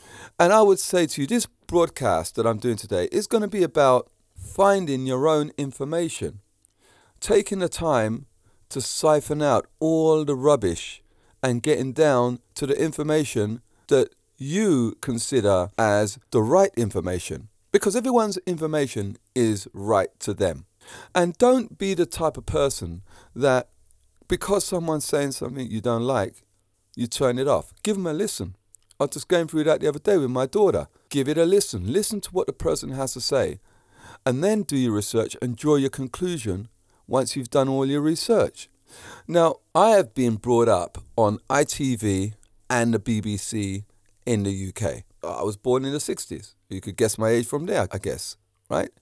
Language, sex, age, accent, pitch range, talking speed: English, male, 30-49, British, 105-155 Hz, 175 wpm